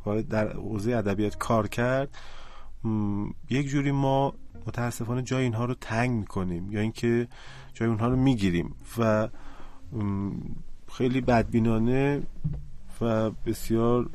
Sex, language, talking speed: male, Persian, 115 wpm